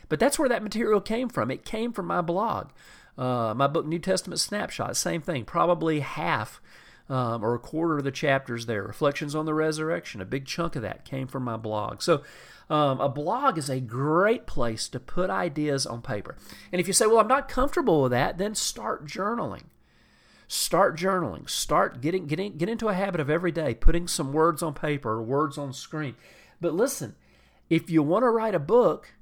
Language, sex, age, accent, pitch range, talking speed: English, male, 40-59, American, 130-175 Hz, 205 wpm